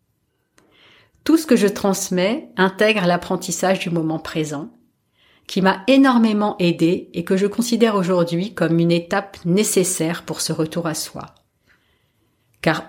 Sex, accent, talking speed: female, French, 135 wpm